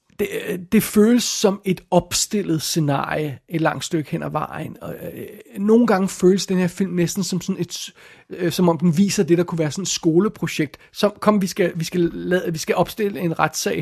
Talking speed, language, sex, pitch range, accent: 215 wpm, Danish, male, 160-190 Hz, native